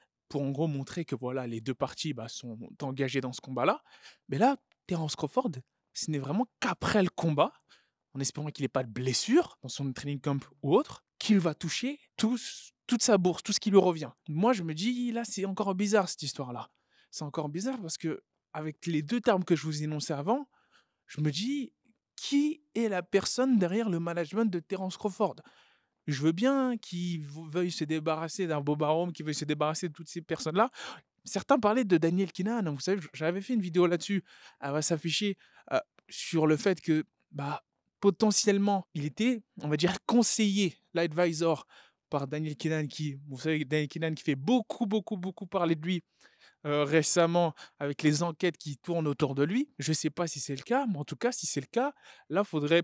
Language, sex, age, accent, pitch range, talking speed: French, male, 20-39, French, 150-215 Hz, 200 wpm